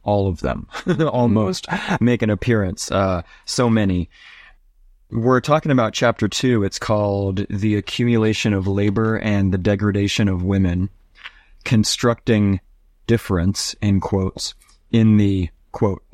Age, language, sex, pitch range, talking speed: 30-49, English, male, 100-115 Hz, 125 wpm